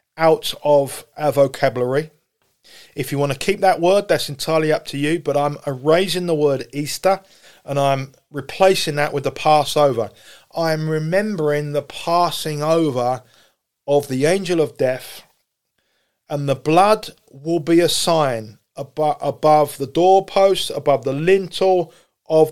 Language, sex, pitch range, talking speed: English, male, 145-185 Hz, 145 wpm